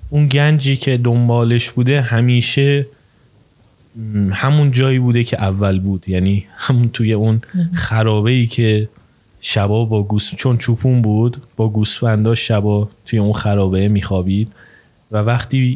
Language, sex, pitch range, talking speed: Persian, male, 105-125 Hz, 125 wpm